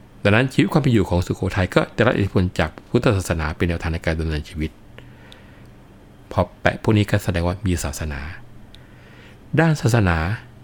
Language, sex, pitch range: Thai, male, 80-105 Hz